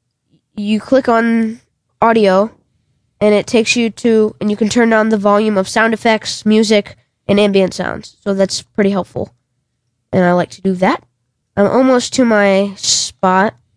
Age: 20-39